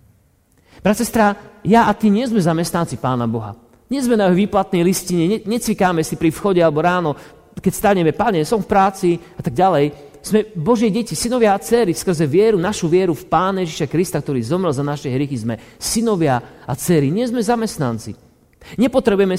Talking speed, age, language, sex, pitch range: 175 wpm, 40-59, Slovak, male, 135-205 Hz